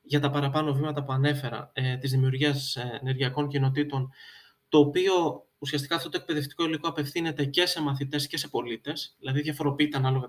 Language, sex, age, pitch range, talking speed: Greek, male, 20-39, 135-180 Hz, 155 wpm